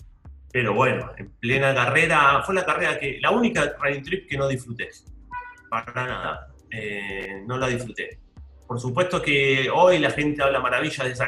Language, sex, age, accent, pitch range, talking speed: Spanish, male, 30-49, Argentinian, 115-140 Hz, 170 wpm